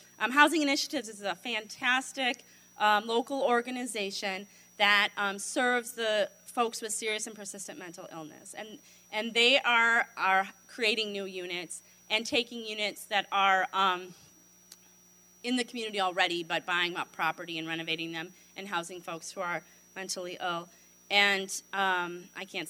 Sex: female